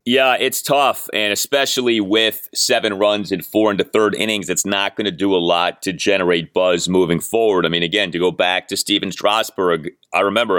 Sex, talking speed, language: male, 205 wpm, English